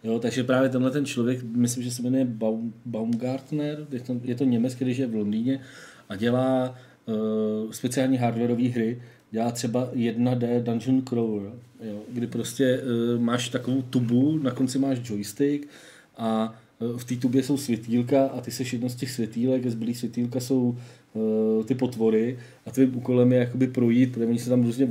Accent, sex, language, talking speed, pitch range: native, male, Czech, 180 wpm, 115-130 Hz